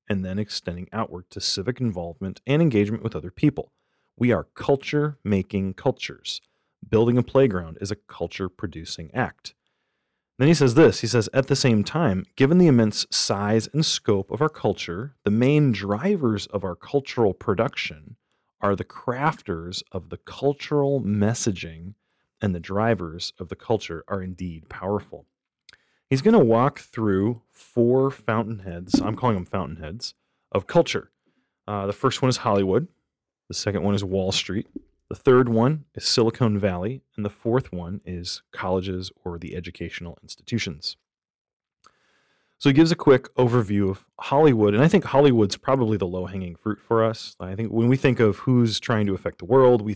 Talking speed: 165 wpm